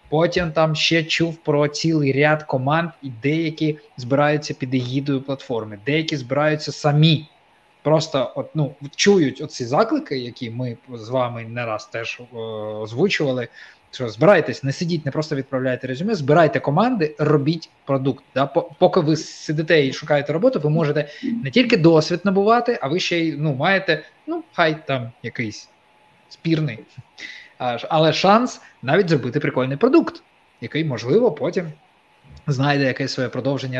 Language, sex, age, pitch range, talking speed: Ukrainian, male, 20-39, 130-160 Hz, 145 wpm